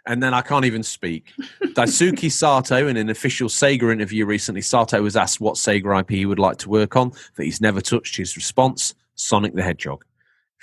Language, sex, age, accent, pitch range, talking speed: English, male, 30-49, British, 95-120 Hz, 205 wpm